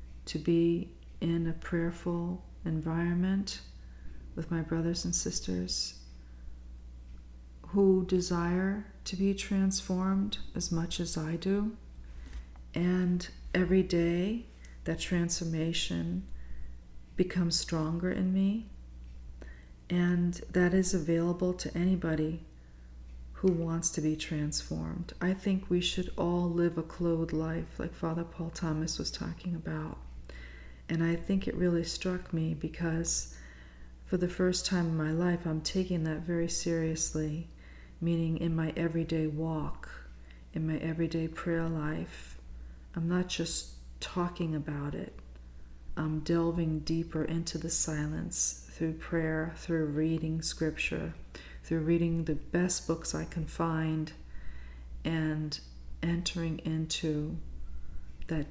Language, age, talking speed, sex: English, 40-59, 120 wpm, female